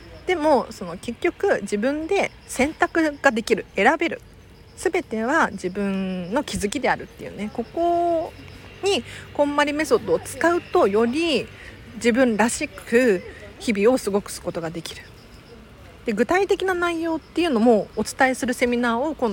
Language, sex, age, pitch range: Japanese, female, 40-59, 195-280 Hz